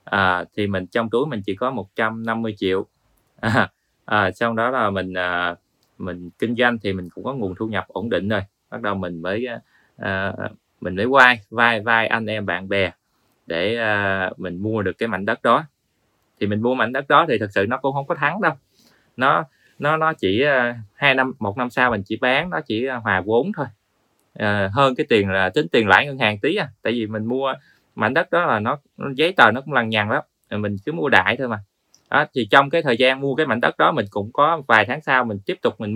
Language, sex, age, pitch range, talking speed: Vietnamese, male, 20-39, 100-130 Hz, 240 wpm